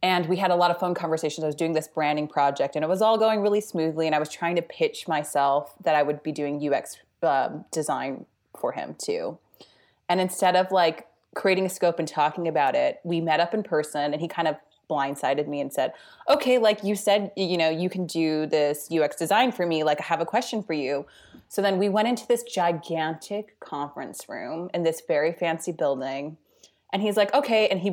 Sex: female